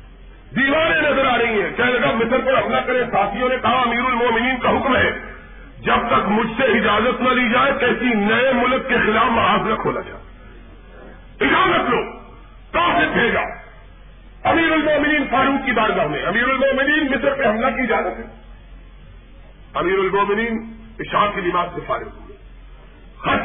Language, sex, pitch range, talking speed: Urdu, male, 220-275 Hz, 155 wpm